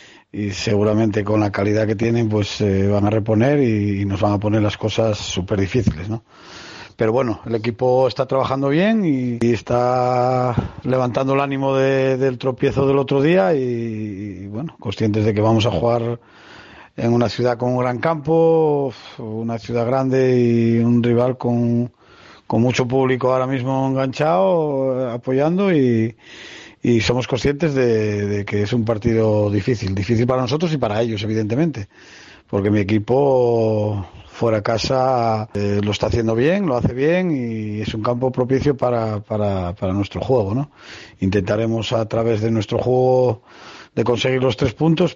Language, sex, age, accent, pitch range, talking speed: Spanish, male, 40-59, Spanish, 110-130 Hz, 165 wpm